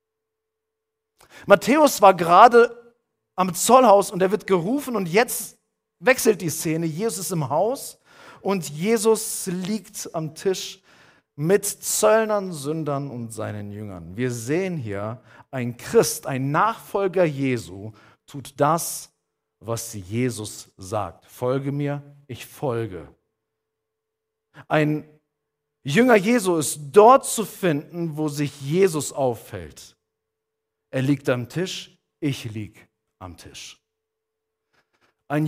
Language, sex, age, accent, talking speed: German, male, 50-69, German, 110 wpm